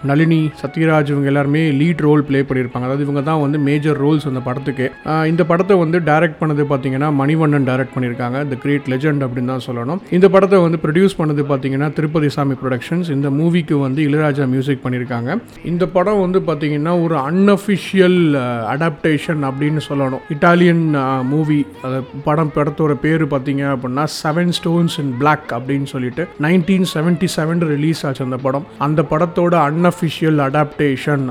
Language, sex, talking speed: Tamil, male, 45 wpm